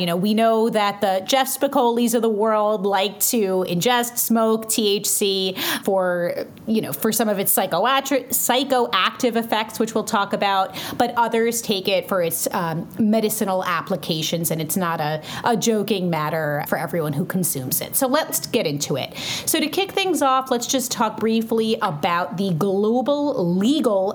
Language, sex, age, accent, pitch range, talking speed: English, female, 30-49, American, 180-245 Hz, 170 wpm